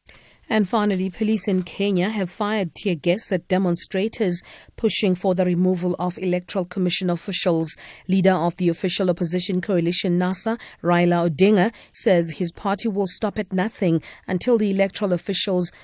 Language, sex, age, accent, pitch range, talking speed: English, female, 40-59, South African, 175-205 Hz, 150 wpm